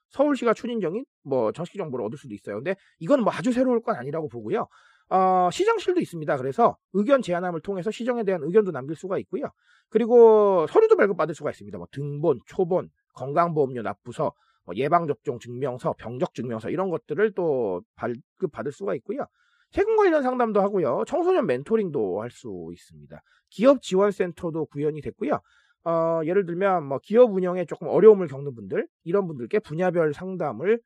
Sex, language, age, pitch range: male, Korean, 30-49, 150-235 Hz